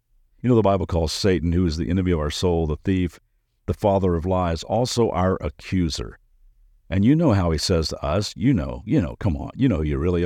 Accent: American